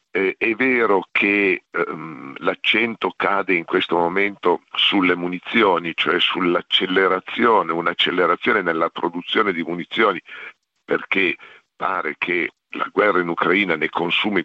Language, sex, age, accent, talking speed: Italian, male, 50-69, native, 115 wpm